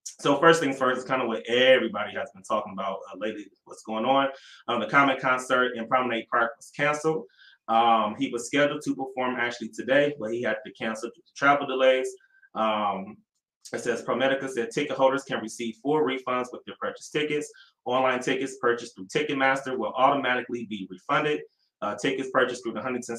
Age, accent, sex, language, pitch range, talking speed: 20-39, American, male, English, 115-140 Hz, 190 wpm